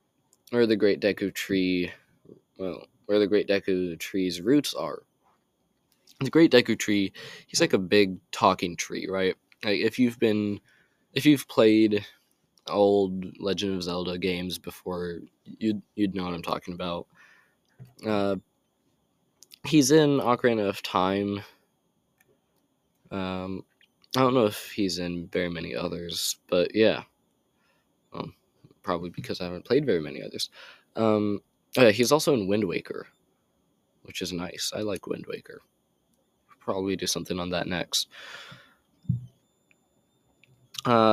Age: 20-39